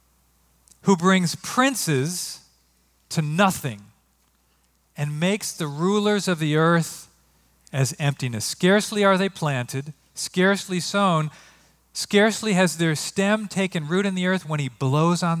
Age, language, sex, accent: 40-59, English, male, American